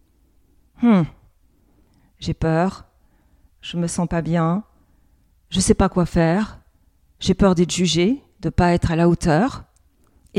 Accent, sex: French, female